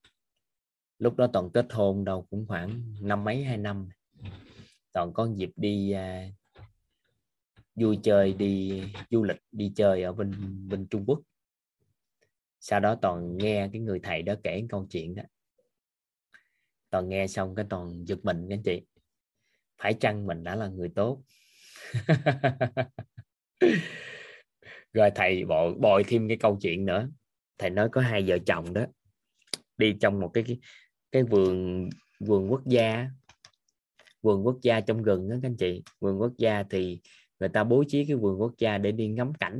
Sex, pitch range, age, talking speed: male, 100-120 Hz, 20-39, 160 wpm